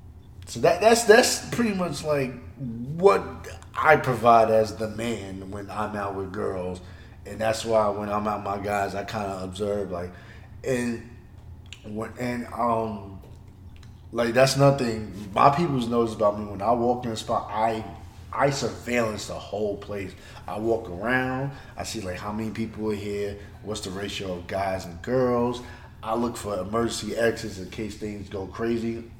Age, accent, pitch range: 30-49, American, 100-120 Hz